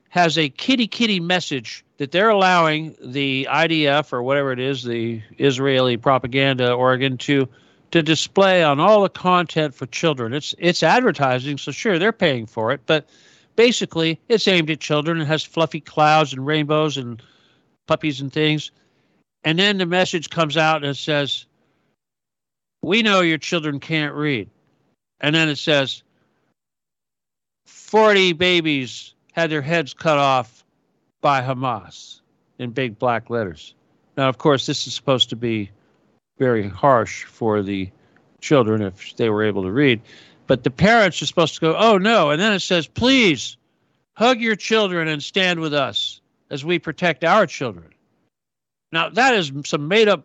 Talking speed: 160 wpm